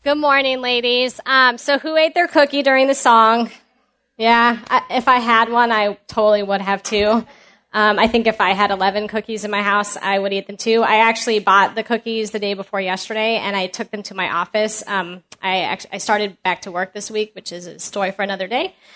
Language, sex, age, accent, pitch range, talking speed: English, female, 20-39, American, 195-240 Hz, 230 wpm